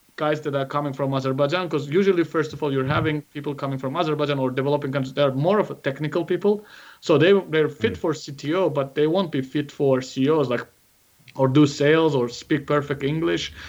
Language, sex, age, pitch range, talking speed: English, male, 30-49, 135-155 Hz, 210 wpm